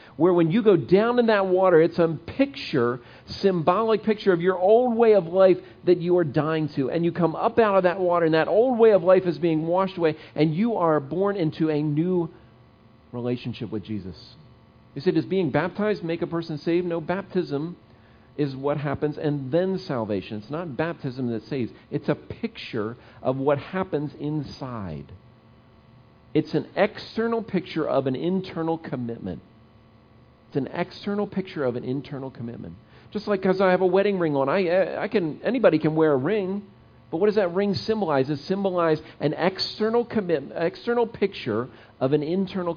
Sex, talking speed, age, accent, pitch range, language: male, 180 wpm, 40-59, American, 125-185 Hz, English